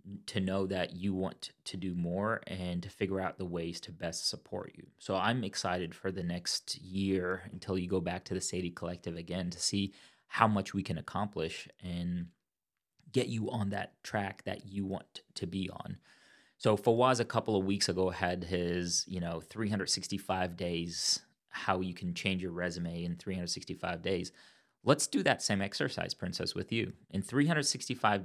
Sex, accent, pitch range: male, American, 90-105 Hz